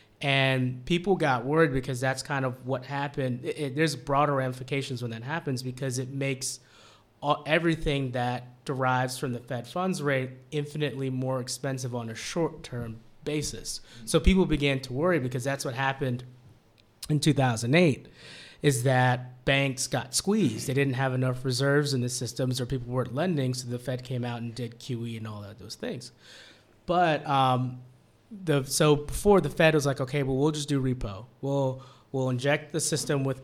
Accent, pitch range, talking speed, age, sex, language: American, 125-145 Hz, 180 wpm, 20-39, male, English